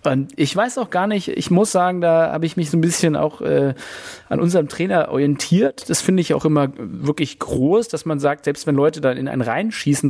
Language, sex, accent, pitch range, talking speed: German, male, German, 135-170 Hz, 230 wpm